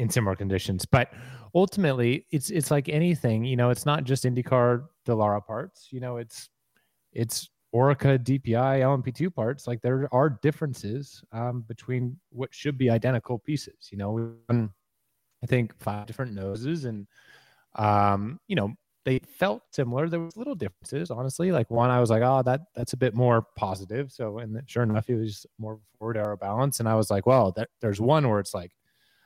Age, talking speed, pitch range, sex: 30-49, 185 wpm, 100-130 Hz, male